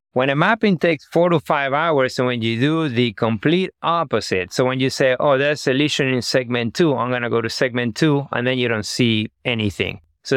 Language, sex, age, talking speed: English, male, 30-49, 230 wpm